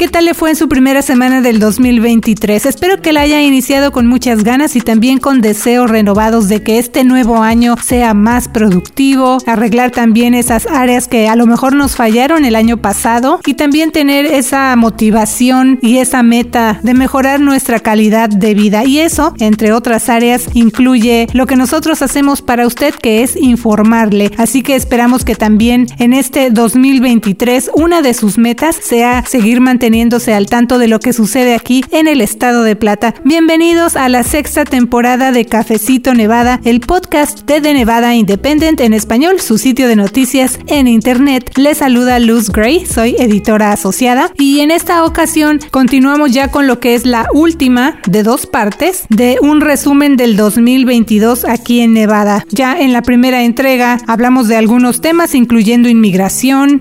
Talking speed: 170 wpm